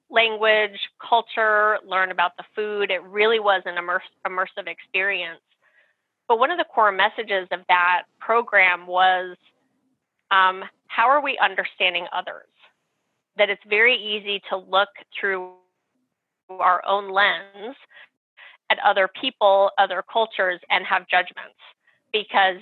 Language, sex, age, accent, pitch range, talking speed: English, female, 20-39, American, 185-215 Hz, 125 wpm